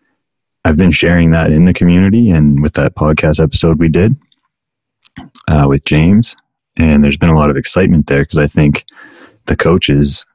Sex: male